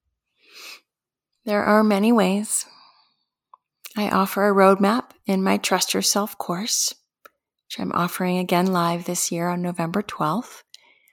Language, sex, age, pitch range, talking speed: English, female, 30-49, 180-220 Hz, 125 wpm